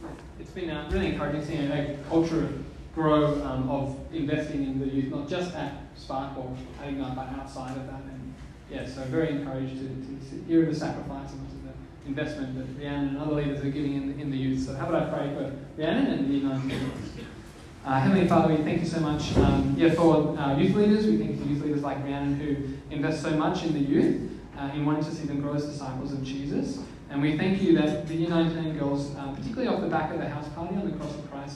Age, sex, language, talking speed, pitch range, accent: 20-39, male, English, 235 wpm, 135-160 Hz, Australian